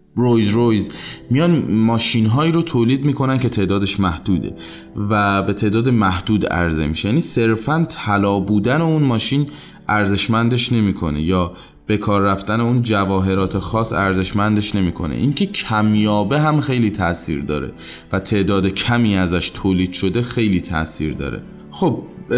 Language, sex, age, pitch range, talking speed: Persian, male, 20-39, 95-125 Hz, 130 wpm